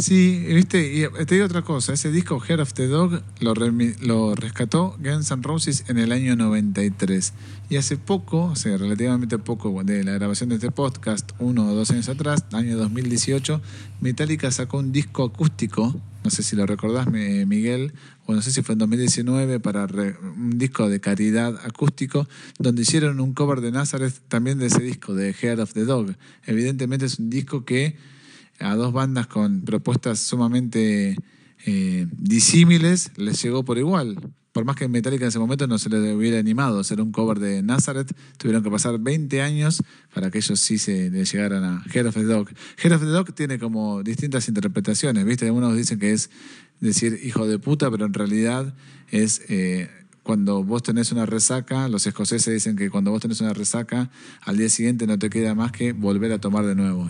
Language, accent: Spanish, Argentinian